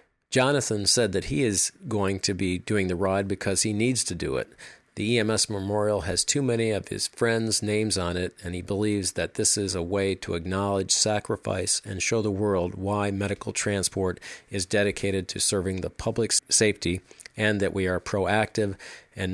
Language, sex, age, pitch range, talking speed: English, male, 50-69, 95-115 Hz, 185 wpm